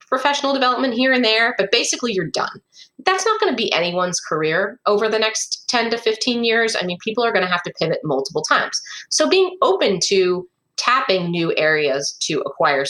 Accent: American